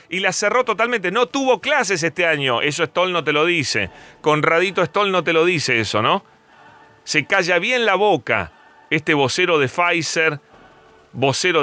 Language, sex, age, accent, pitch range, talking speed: Spanish, male, 30-49, Argentinian, 135-185 Hz, 170 wpm